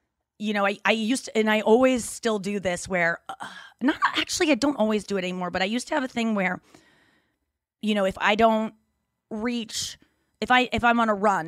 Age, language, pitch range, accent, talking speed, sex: 30-49, English, 205-265 Hz, American, 225 wpm, female